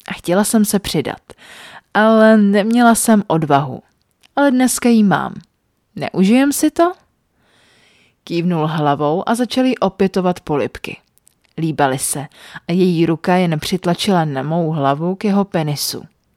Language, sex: Czech, female